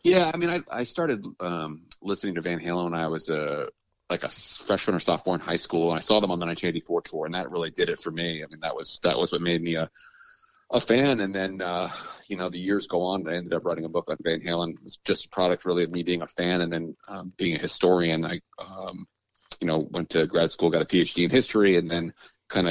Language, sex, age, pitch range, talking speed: English, male, 30-49, 80-90 Hz, 265 wpm